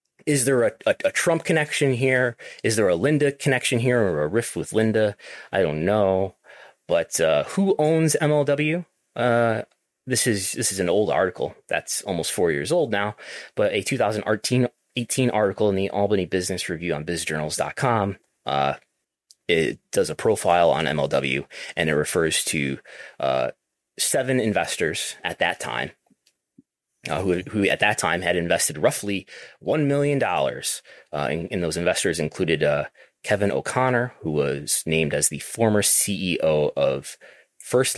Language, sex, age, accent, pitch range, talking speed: English, male, 20-39, American, 90-130 Hz, 155 wpm